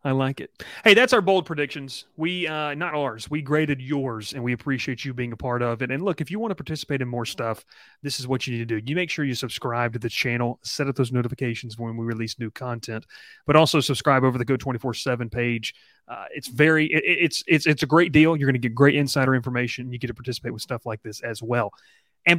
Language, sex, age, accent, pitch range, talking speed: English, male, 30-49, American, 120-155 Hz, 260 wpm